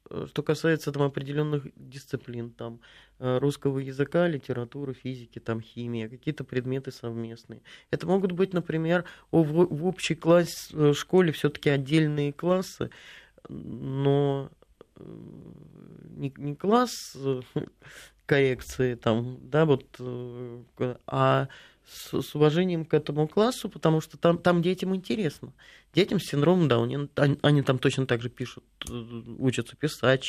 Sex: male